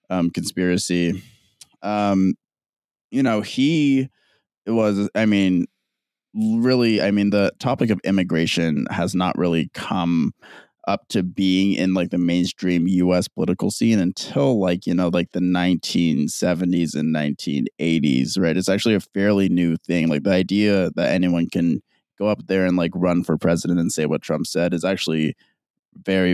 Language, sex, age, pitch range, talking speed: English, male, 20-39, 85-100 Hz, 155 wpm